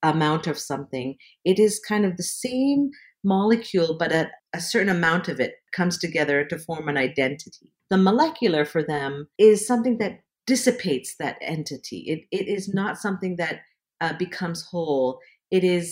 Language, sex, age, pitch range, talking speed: English, female, 40-59, 155-205 Hz, 165 wpm